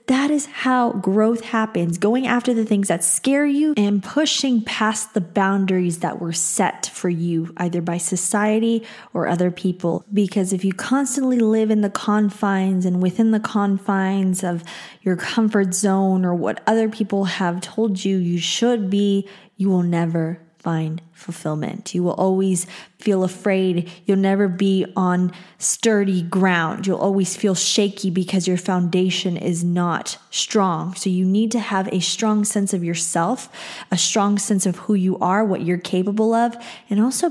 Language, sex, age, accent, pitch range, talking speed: English, female, 20-39, American, 180-215 Hz, 165 wpm